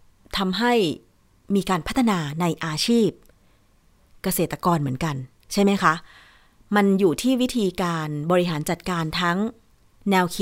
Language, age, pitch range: Thai, 30-49, 155-205 Hz